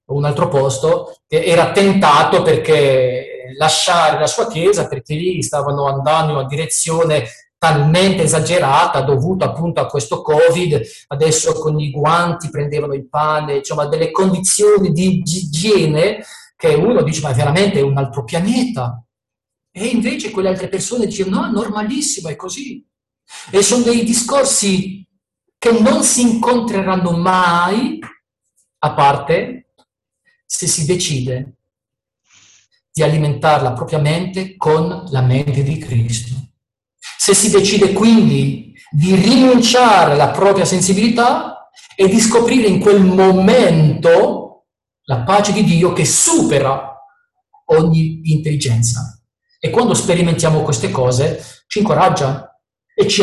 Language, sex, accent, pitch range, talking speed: Italian, male, native, 140-205 Hz, 125 wpm